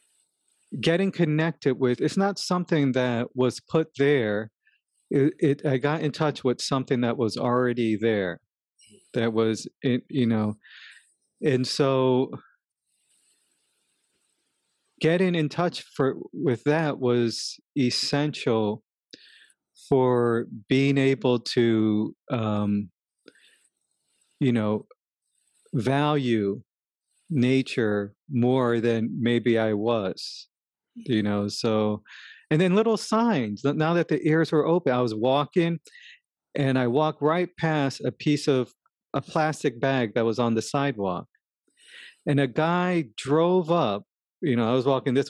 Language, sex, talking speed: English, male, 125 wpm